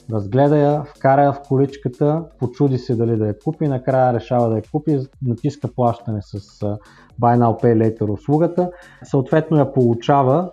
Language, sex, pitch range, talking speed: Bulgarian, male, 120-145 Hz, 155 wpm